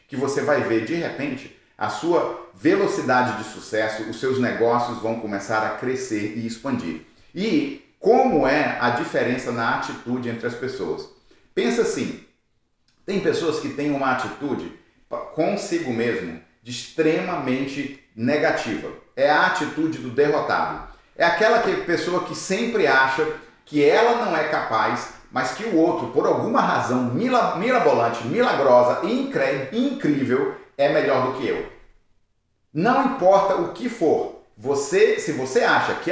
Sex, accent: male, Brazilian